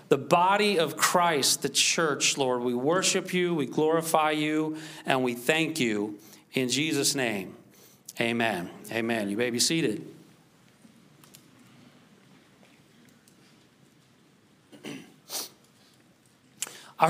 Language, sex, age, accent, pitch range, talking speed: English, male, 40-59, American, 130-175 Hz, 95 wpm